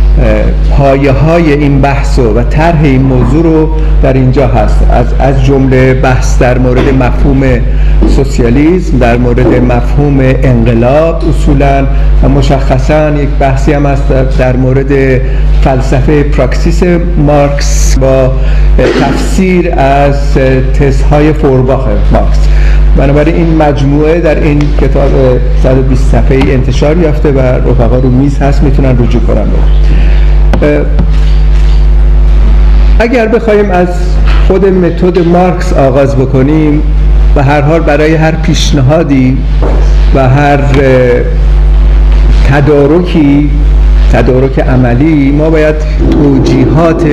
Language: Persian